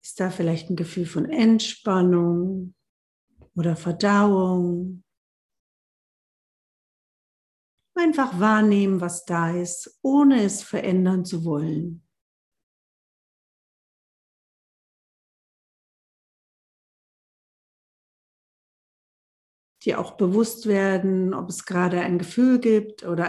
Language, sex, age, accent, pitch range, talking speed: English, female, 50-69, German, 175-220 Hz, 75 wpm